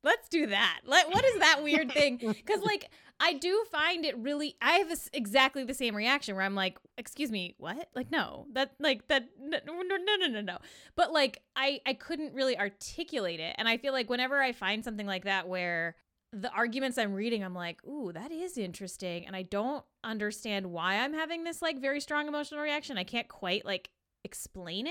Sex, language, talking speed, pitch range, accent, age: female, English, 205 wpm, 200-285 Hz, American, 20-39